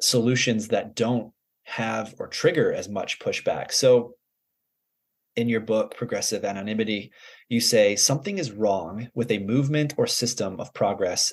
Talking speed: 145 wpm